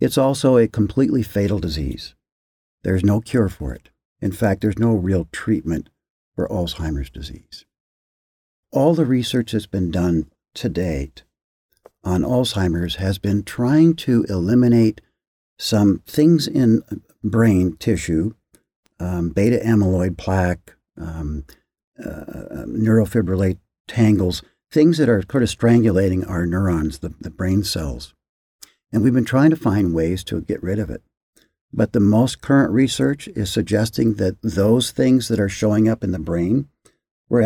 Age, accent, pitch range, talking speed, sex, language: 60-79, American, 85-115 Hz, 145 wpm, male, English